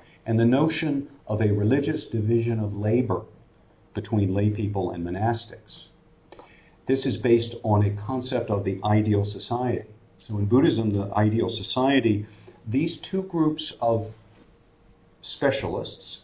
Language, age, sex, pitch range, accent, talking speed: English, 50-69, male, 95-120 Hz, American, 130 wpm